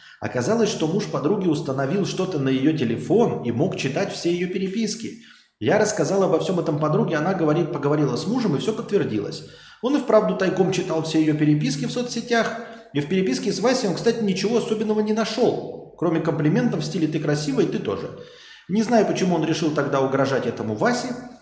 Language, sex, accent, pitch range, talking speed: Russian, male, native, 140-205 Hz, 190 wpm